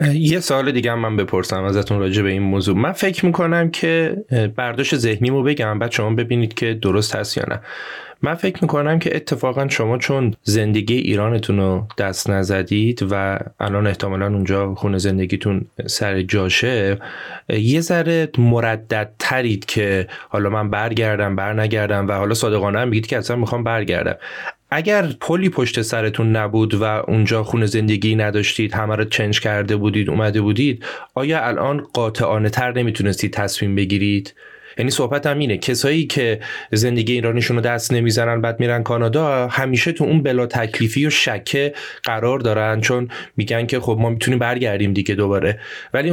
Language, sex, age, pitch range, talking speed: Persian, male, 30-49, 105-135 Hz, 155 wpm